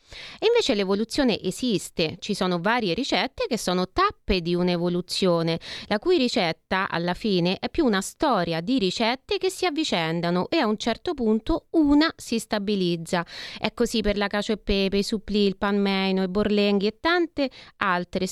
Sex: female